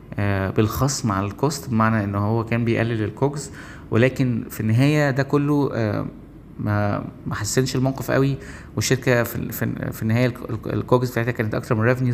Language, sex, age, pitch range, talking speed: Arabic, male, 20-39, 110-130 Hz, 145 wpm